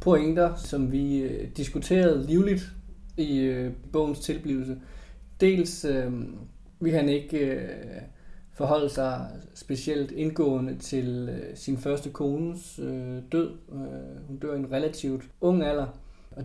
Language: Danish